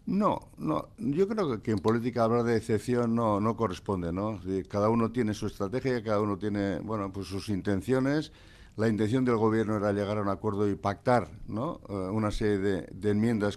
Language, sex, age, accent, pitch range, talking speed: Spanish, male, 60-79, Spanish, 100-115 Hz, 190 wpm